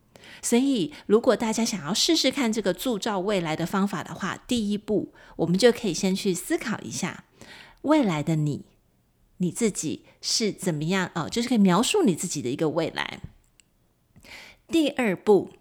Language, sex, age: Chinese, female, 30-49